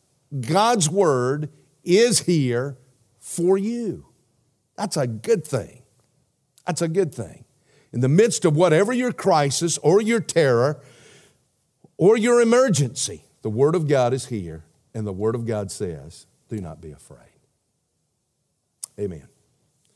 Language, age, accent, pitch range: English, 50-69, American, 125-170 Hz